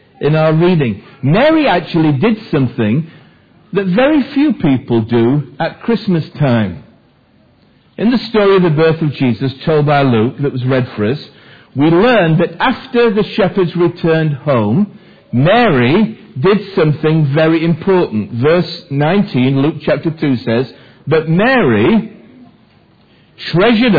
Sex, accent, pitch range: male, British, 135-190 Hz